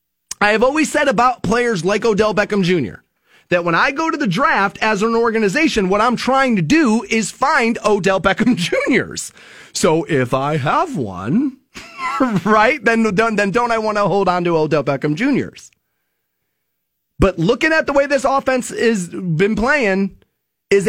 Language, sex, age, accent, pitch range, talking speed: English, male, 30-49, American, 170-250 Hz, 170 wpm